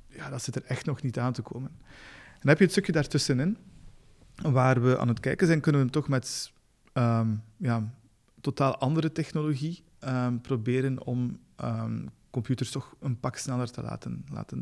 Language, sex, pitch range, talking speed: Dutch, male, 120-140 Hz, 180 wpm